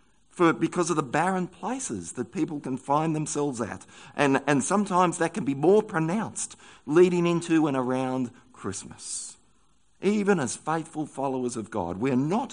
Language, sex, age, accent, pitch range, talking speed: English, male, 50-69, Australian, 125-170 Hz, 155 wpm